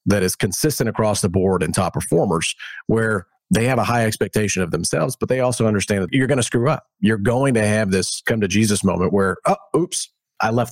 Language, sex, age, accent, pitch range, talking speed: English, male, 40-59, American, 95-120 Hz, 225 wpm